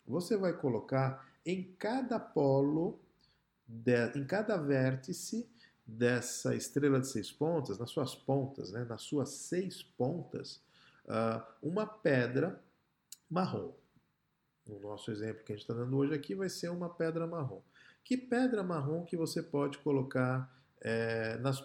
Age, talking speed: 50-69, 140 wpm